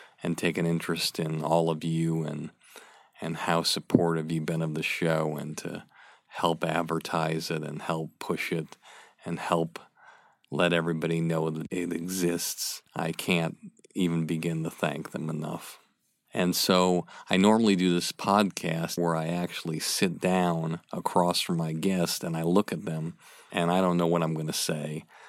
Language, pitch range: English, 80-85 Hz